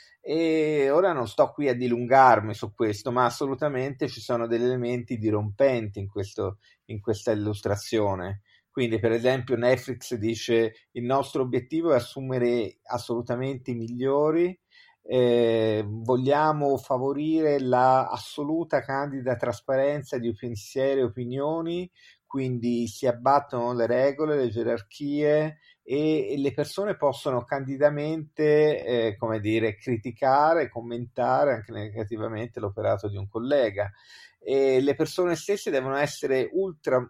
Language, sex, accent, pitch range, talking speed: Italian, male, native, 115-140 Hz, 120 wpm